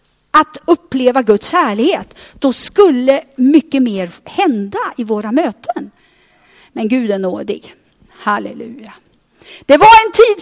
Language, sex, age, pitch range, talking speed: Swedish, female, 50-69, 215-310 Hz, 120 wpm